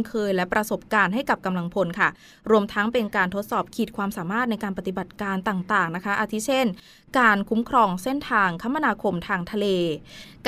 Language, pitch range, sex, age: Thai, 190-230 Hz, female, 20-39